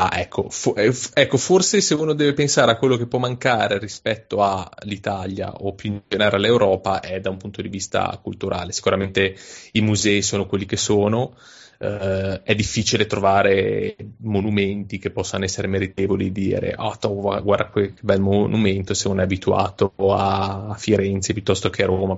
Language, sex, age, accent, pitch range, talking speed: Italian, male, 20-39, native, 95-110 Hz, 170 wpm